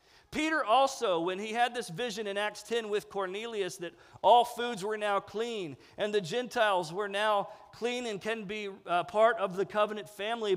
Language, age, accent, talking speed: English, 40-59, American, 185 wpm